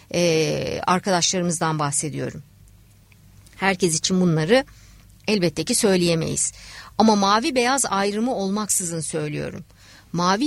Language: Turkish